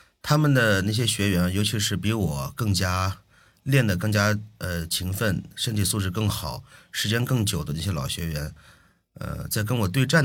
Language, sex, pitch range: Chinese, male, 85-115 Hz